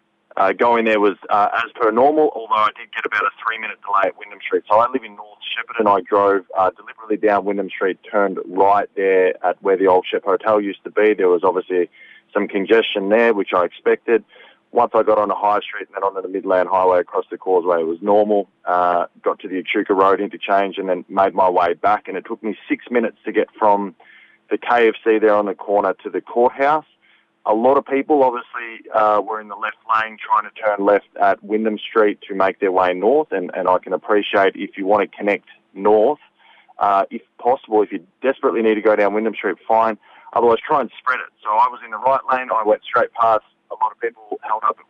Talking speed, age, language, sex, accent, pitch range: 235 wpm, 20-39, English, male, Australian, 100-130 Hz